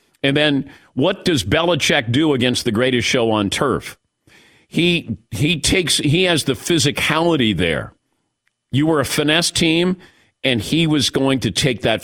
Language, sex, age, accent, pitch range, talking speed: English, male, 50-69, American, 115-155 Hz, 160 wpm